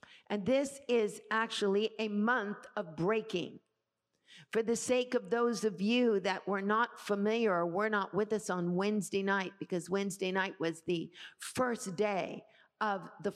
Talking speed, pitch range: 160 wpm, 195-225 Hz